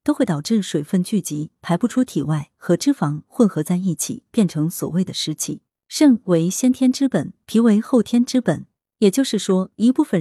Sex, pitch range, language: female, 160-225 Hz, Chinese